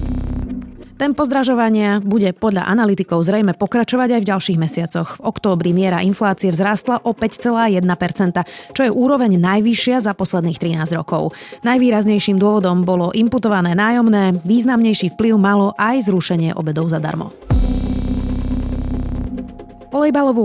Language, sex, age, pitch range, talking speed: Slovak, female, 30-49, 165-220 Hz, 115 wpm